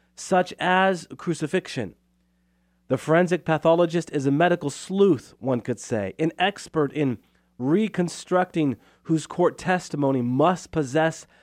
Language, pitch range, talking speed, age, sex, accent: English, 110-160 Hz, 115 wpm, 30-49, male, American